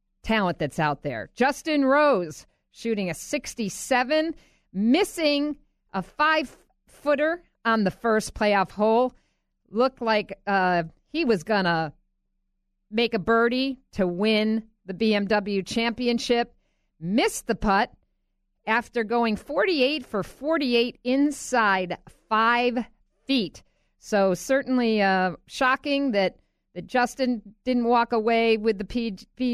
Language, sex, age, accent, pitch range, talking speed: English, female, 50-69, American, 185-250 Hz, 115 wpm